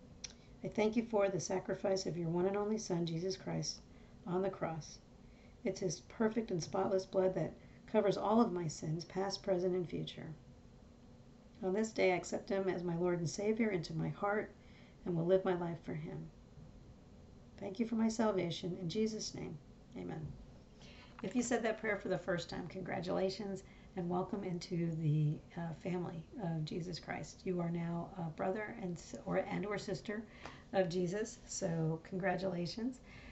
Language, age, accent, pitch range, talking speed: English, 50-69, American, 175-195 Hz, 175 wpm